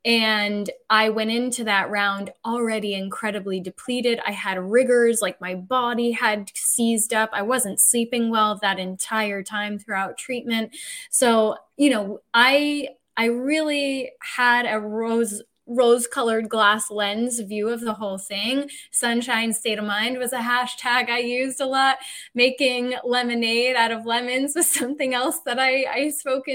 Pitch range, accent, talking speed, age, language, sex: 220-270 Hz, American, 150 wpm, 10-29, English, female